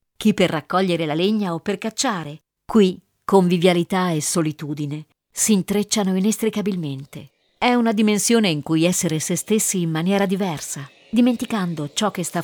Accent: native